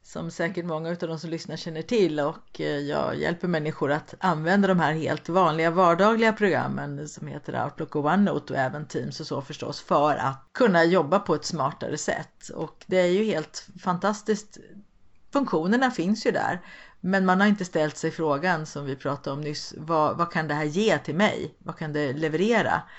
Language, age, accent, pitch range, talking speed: Swedish, 50-69, native, 150-190 Hz, 195 wpm